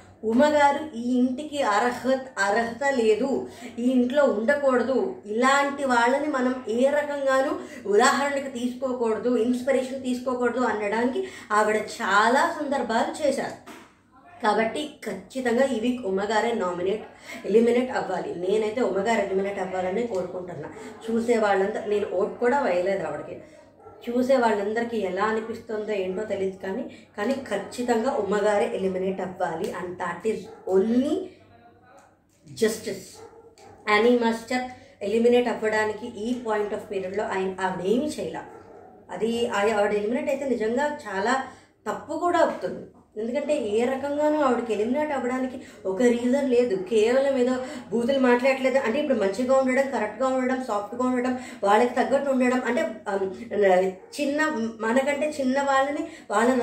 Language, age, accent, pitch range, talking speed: Telugu, 20-39, native, 210-270 Hz, 100 wpm